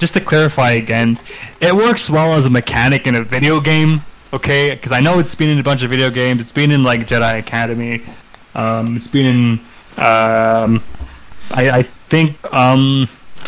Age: 20-39